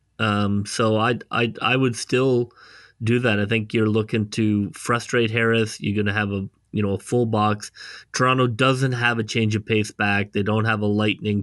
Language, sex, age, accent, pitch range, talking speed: English, male, 20-39, American, 105-115 Hz, 200 wpm